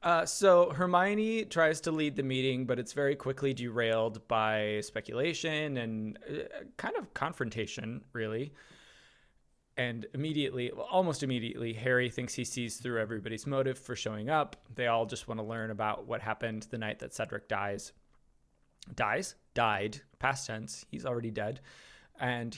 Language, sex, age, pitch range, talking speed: English, male, 20-39, 115-140 Hz, 150 wpm